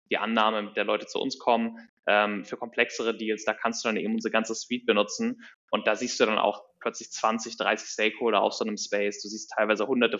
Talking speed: 225 wpm